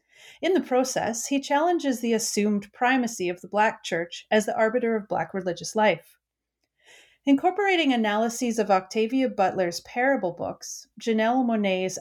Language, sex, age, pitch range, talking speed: English, female, 30-49, 190-275 Hz, 140 wpm